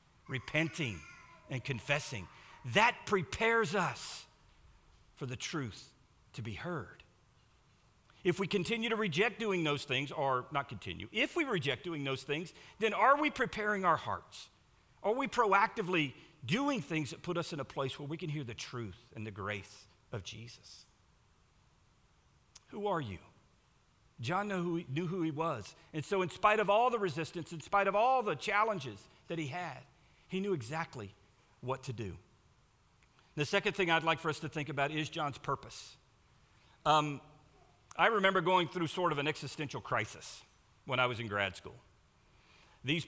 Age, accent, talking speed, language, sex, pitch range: 50-69, American, 165 wpm, English, male, 125-170 Hz